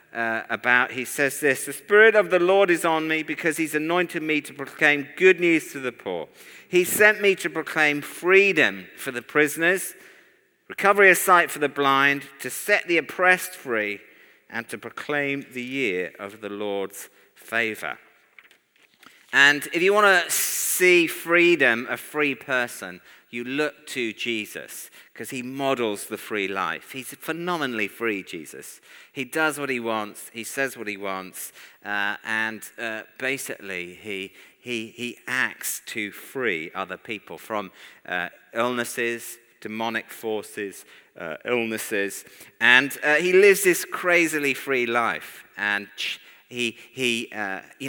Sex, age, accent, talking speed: male, 50-69, British, 150 wpm